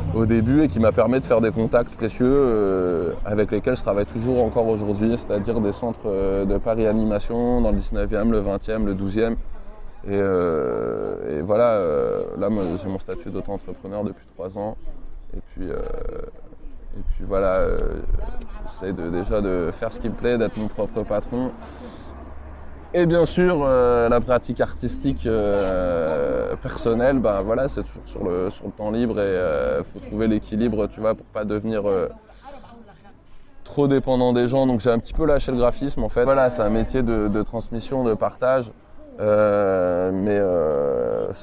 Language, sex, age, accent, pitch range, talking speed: French, male, 20-39, French, 100-130 Hz, 185 wpm